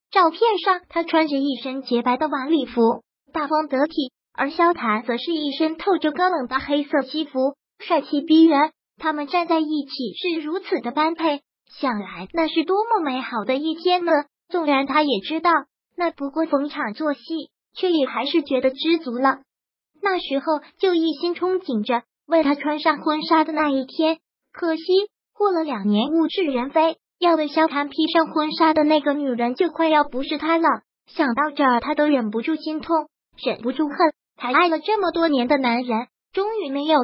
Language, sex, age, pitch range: Chinese, male, 20-39, 275-330 Hz